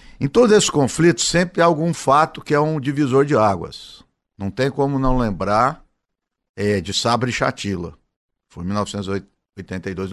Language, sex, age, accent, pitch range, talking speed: Portuguese, male, 60-79, Brazilian, 105-145 Hz, 160 wpm